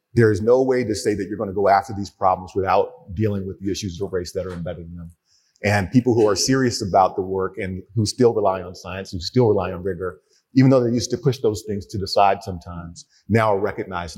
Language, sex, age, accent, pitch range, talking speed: English, male, 40-59, American, 95-125 Hz, 255 wpm